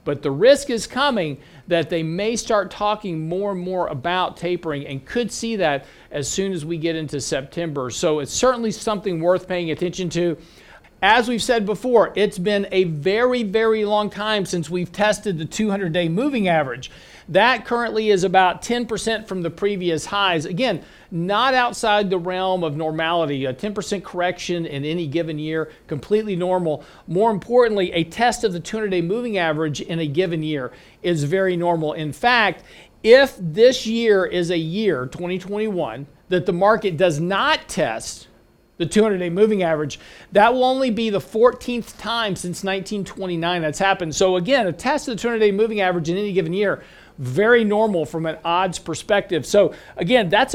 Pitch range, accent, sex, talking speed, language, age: 170-215 Hz, American, male, 170 wpm, English, 50-69